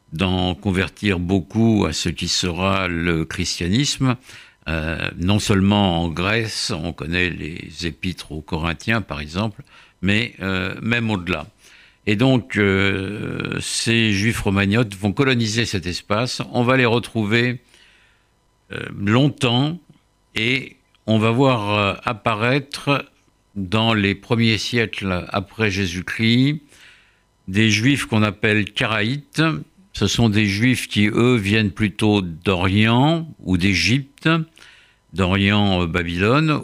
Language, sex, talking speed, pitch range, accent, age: French, male, 115 wpm, 95-125 Hz, French, 60-79